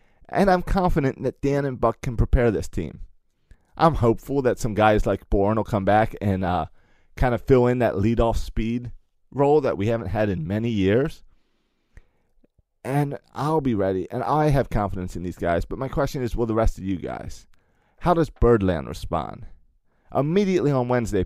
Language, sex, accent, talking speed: English, male, American, 185 wpm